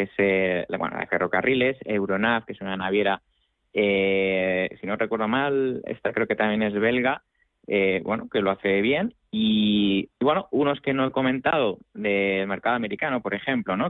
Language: Spanish